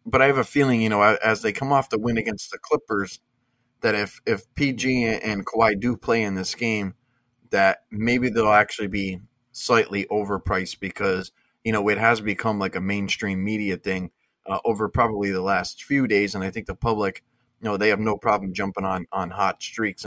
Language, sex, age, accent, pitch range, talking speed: English, male, 30-49, American, 100-120 Hz, 205 wpm